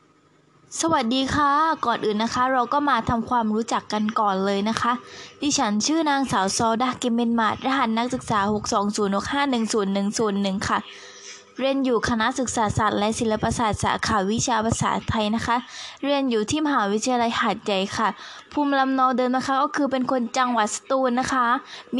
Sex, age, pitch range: female, 10-29, 225-265 Hz